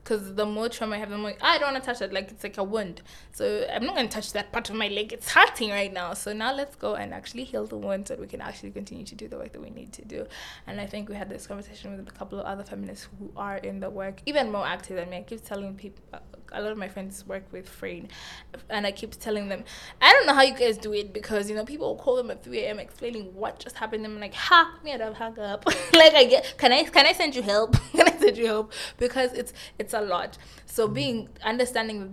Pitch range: 195-230 Hz